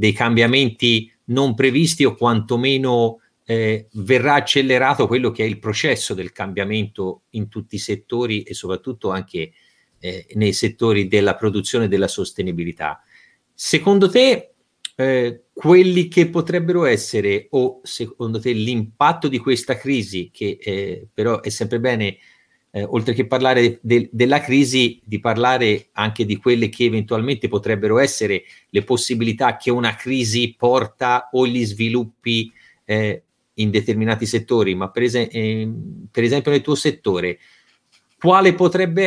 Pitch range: 110-135 Hz